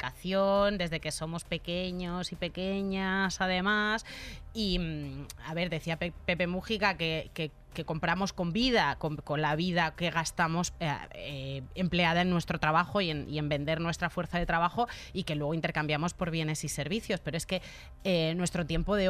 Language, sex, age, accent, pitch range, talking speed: Spanish, female, 20-39, Spanish, 160-195 Hz, 175 wpm